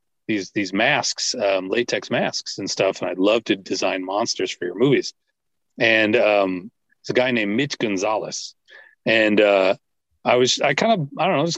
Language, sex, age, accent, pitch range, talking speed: English, male, 40-59, American, 105-170 Hz, 185 wpm